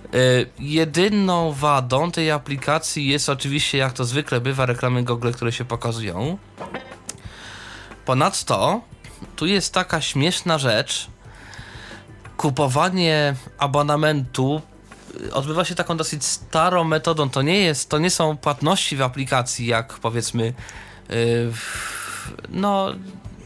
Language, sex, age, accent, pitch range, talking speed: Polish, male, 20-39, native, 115-150 Hz, 115 wpm